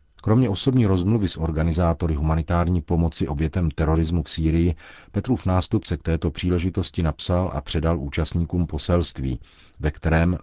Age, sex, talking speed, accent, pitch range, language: 40-59, male, 130 wpm, native, 75-85 Hz, Czech